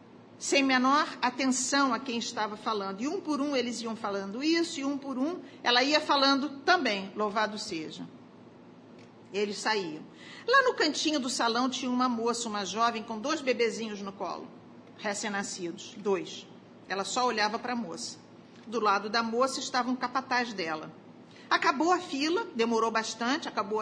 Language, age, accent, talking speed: Portuguese, 50-69, Brazilian, 160 wpm